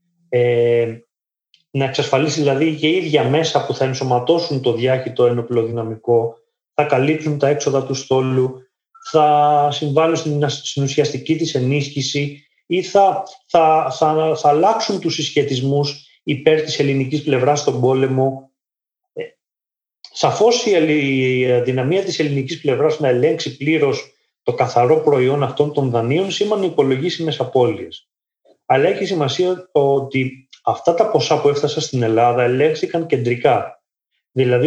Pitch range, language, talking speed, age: 125-165 Hz, Greek, 120 wpm, 30-49